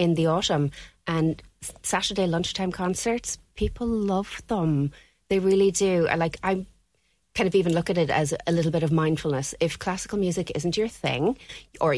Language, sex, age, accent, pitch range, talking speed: English, female, 30-49, Irish, 145-175 Hz, 170 wpm